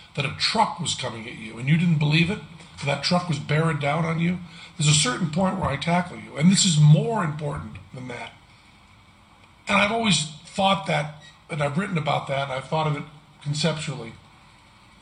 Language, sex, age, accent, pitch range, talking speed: English, male, 50-69, American, 110-155 Hz, 205 wpm